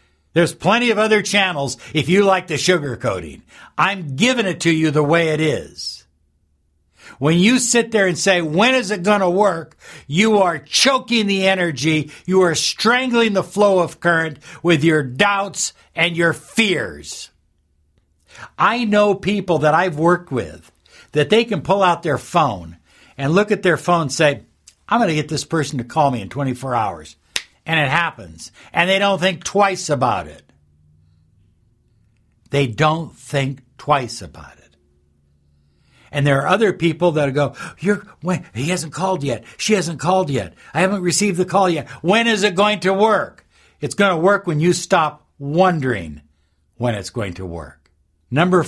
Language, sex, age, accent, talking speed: English, male, 60-79, American, 175 wpm